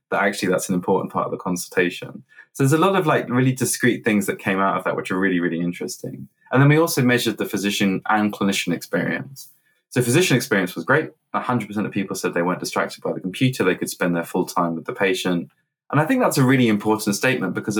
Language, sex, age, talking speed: English, male, 20-39, 240 wpm